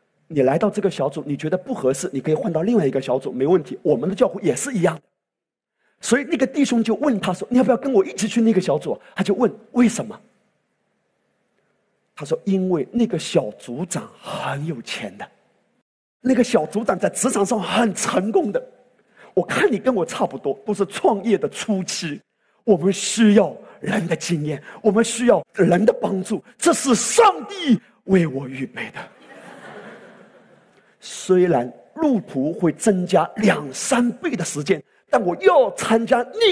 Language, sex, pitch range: Chinese, male, 160-235 Hz